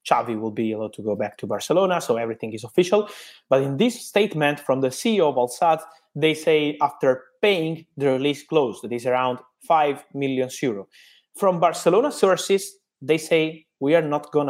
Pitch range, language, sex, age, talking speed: 125-160 Hz, English, male, 20-39, 180 wpm